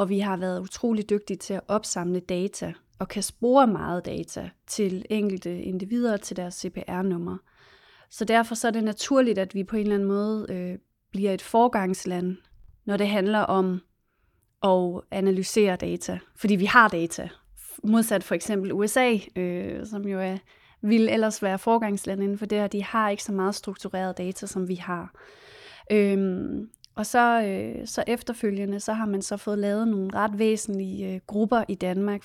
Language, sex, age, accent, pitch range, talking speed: Danish, female, 30-49, native, 185-215 Hz, 175 wpm